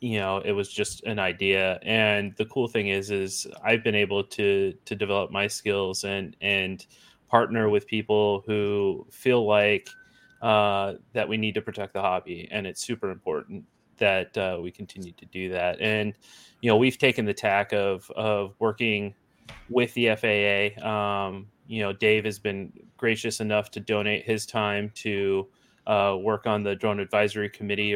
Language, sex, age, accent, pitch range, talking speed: English, male, 30-49, American, 100-110 Hz, 175 wpm